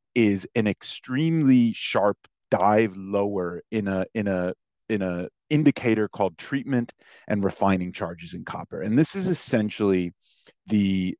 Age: 30-49